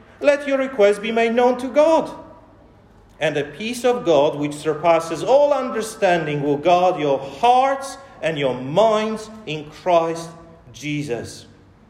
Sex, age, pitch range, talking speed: male, 40-59, 155-245 Hz, 135 wpm